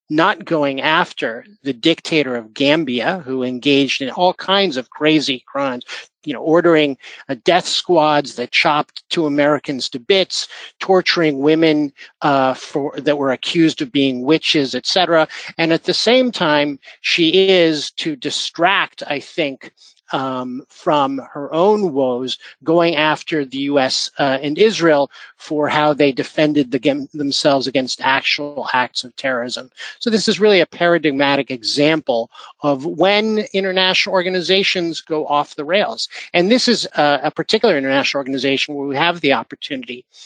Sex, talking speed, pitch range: male, 145 wpm, 140-180 Hz